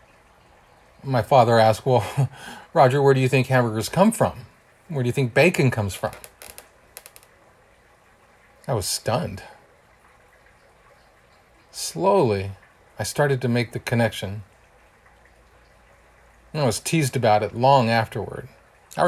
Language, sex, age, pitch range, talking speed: English, male, 40-59, 110-135 Hz, 115 wpm